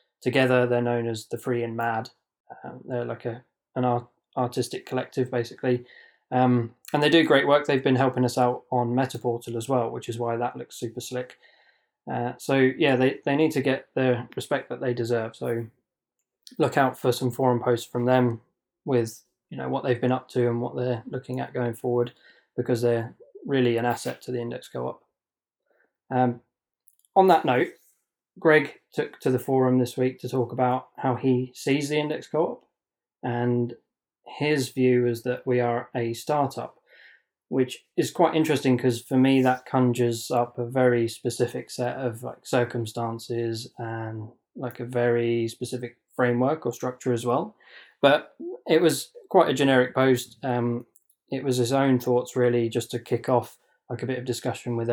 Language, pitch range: English, 120-130 Hz